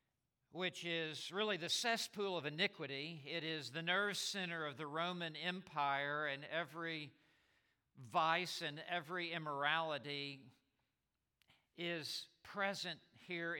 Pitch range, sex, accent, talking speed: 160-205 Hz, male, American, 110 wpm